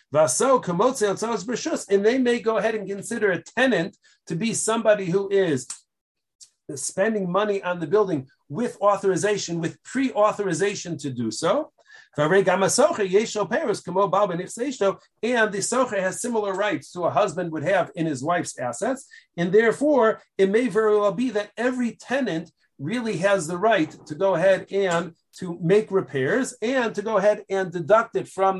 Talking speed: 145 wpm